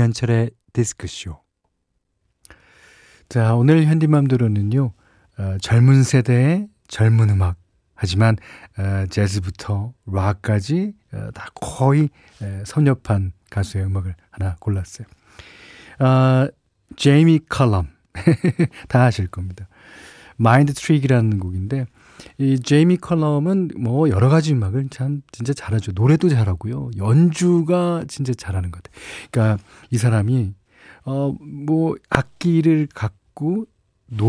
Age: 40-59